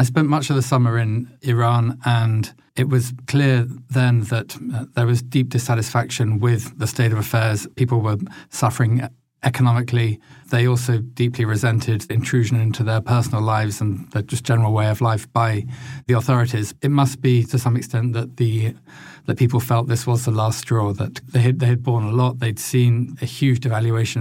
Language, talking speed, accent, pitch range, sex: English, 185 wpm, British, 115-125 Hz, male